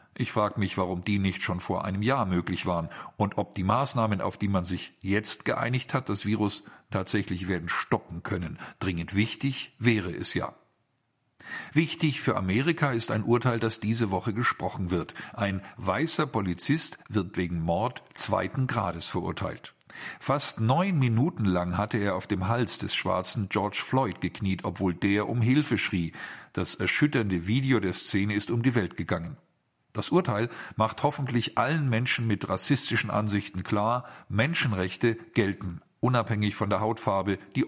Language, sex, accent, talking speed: German, male, German, 160 wpm